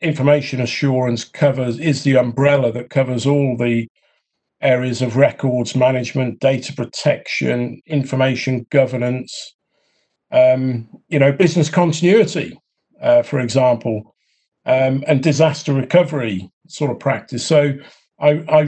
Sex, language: male, English